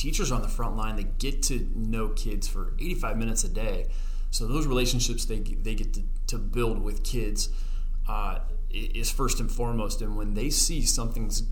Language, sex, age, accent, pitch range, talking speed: English, male, 20-39, American, 100-120 Hz, 195 wpm